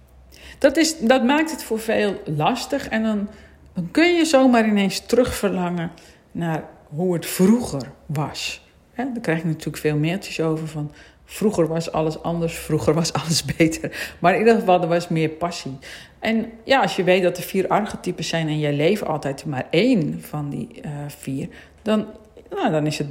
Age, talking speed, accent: 50-69, 175 wpm, Dutch